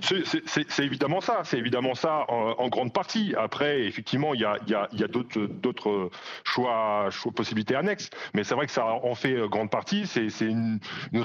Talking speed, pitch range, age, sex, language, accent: 215 wpm, 110-160 Hz, 30-49, male, French, French